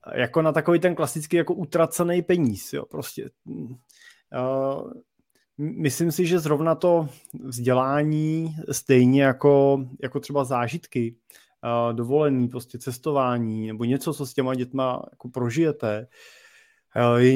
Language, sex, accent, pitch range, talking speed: Czech, male, native, 125-140 Hz, 115 wpm